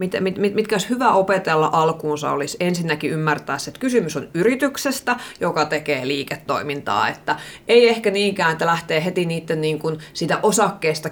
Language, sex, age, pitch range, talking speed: Finnish, female, 30-49, 155-195 Hz, 155 wpm